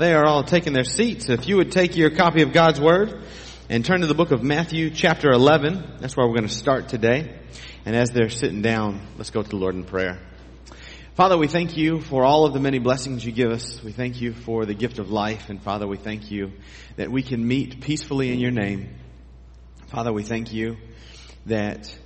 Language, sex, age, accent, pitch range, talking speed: English, male, 30-49, American, 100-125 Hz, 225 wpm